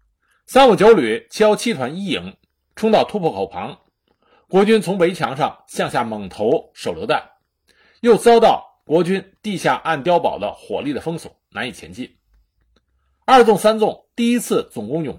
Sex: male